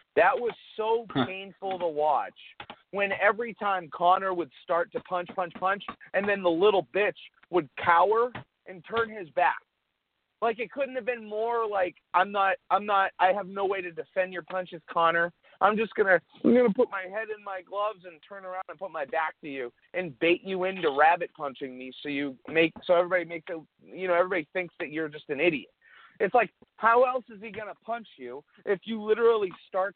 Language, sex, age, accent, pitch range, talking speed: English, male, 40-59, American, 170-215 Hz, 210 wpm